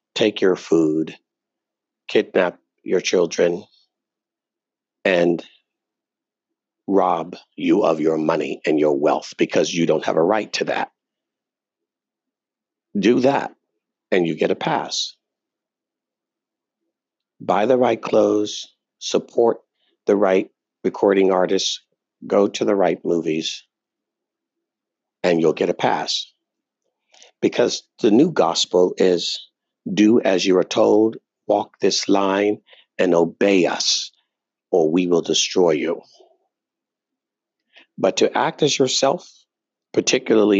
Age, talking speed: 50-69, 110 wpm